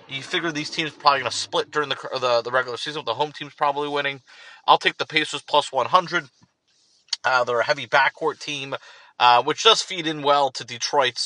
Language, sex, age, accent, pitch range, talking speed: English, male, 30-49, American, 125-155 Hz, 220 wpm